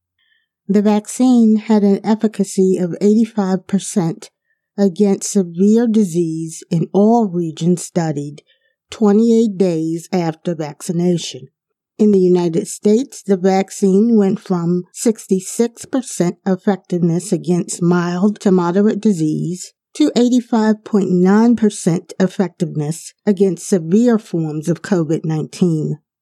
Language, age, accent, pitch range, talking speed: English, 50-69, American, 180-215 Hz, 95 wpm